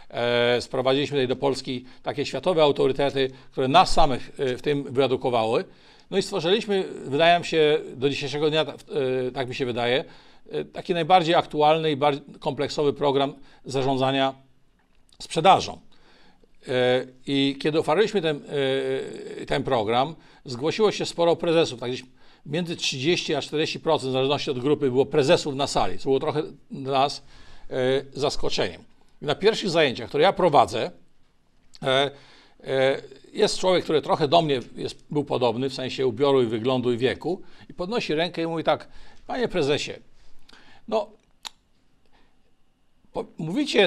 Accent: native